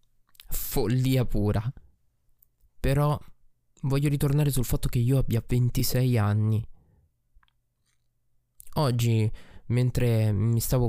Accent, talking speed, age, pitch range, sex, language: native, 90 wpm, 20-39, 110-135 Hz, male, Italian